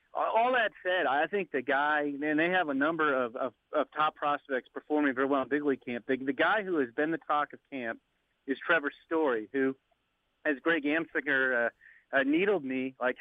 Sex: male